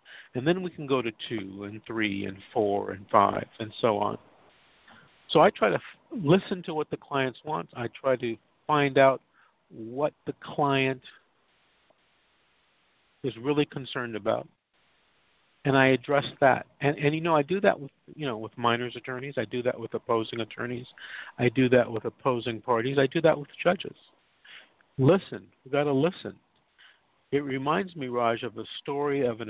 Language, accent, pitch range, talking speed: English, American, 110-140 Hz, 175 wpm